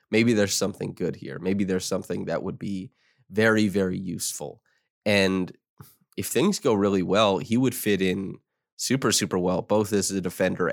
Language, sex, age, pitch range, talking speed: English, male, 20-39, 95-115 Hz, 175 wpm